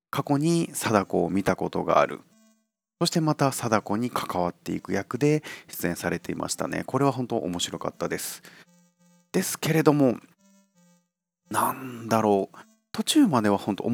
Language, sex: Japanese, male